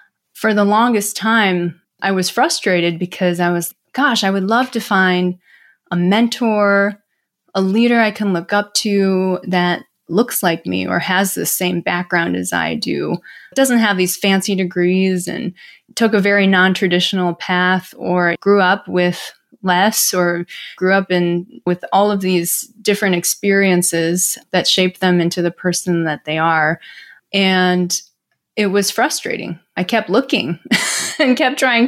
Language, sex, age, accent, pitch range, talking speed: English, female, 20-39, American, 180-220 Hz, 155 wpm